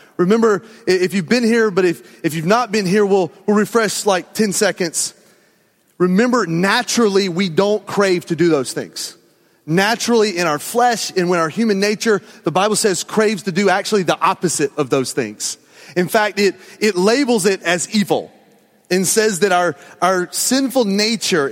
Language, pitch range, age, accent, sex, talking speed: English, 170-225 Hz, 30-49, American, male, 175 wpm